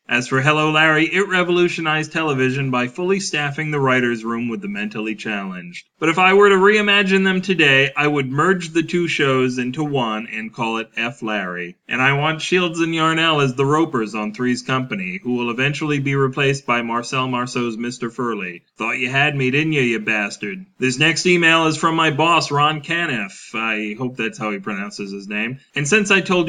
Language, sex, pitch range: English, male, 120-165 Hz